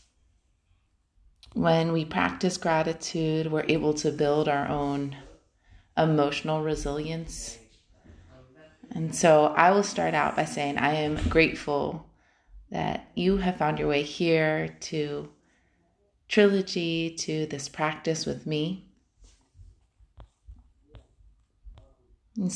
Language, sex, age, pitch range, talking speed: English, female, 30-49, 100-165 Hz, 100 wpm